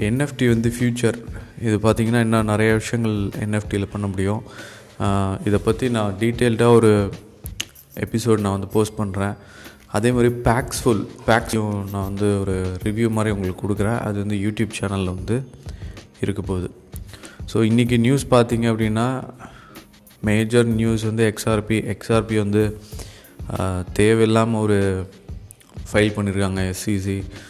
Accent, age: native, 20-39